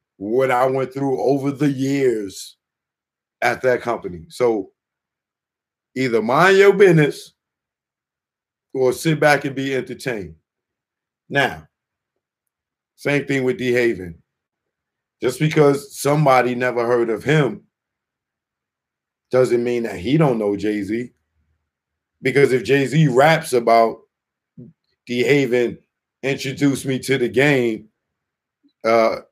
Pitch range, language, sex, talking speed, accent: 125-170 Hz, English, male, 110 wpm, American